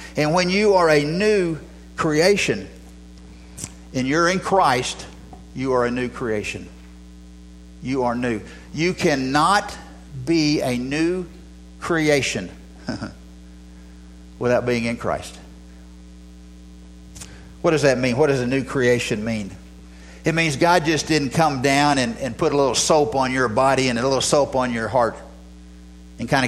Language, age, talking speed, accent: English, 50-69, 145 wpm, American